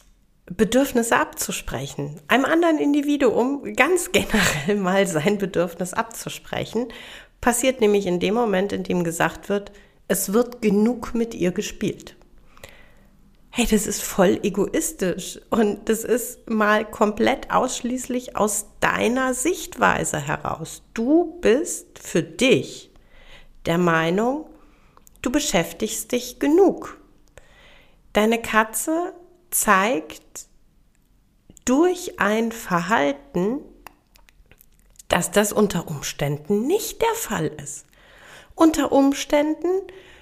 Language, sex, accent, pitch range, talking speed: German, female, German, 205-280 Hz, 100 wpm